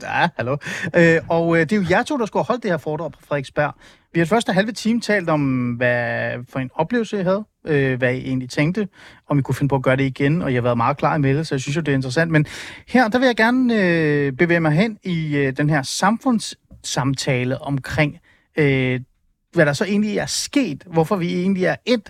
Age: 30-49